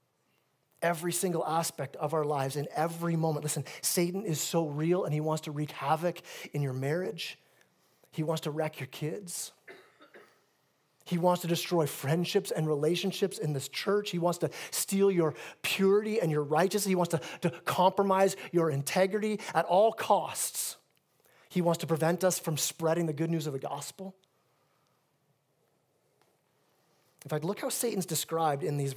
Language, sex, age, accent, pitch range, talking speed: English, male, 30-49, American, 150-200 Hz, 165 wpm